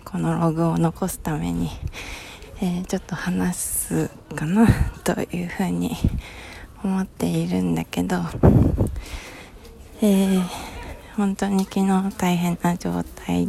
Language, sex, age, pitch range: Japanese, female, 20-39, 130-195 Hz